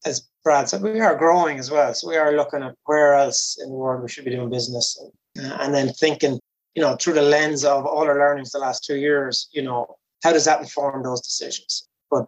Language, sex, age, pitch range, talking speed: English, male, 20-39, 135-155 Hz, 240 wpm